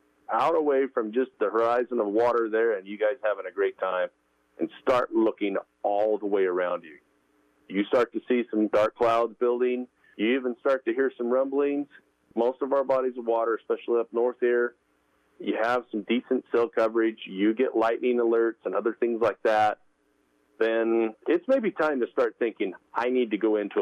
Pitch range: 105-150 Hz